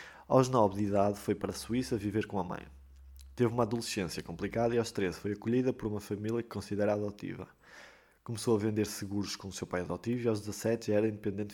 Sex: male